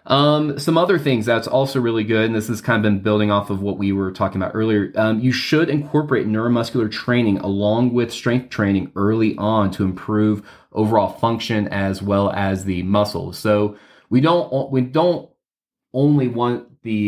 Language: English